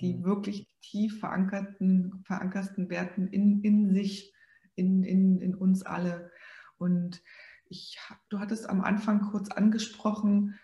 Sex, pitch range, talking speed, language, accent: female, 185-215 Hz, 125 wpm, German, German